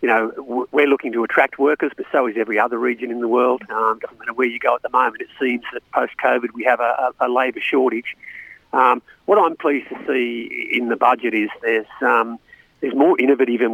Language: English